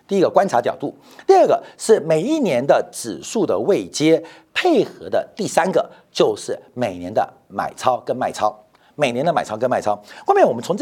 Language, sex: Chinese, male